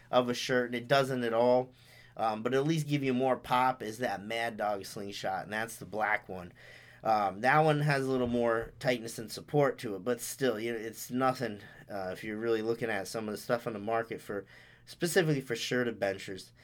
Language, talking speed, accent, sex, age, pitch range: English, 225 wpm, American, male, 30-49, 110-130 Hz